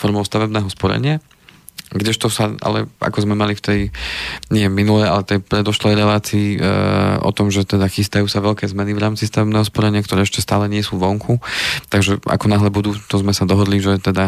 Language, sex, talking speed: Slovak, male, 190 wpm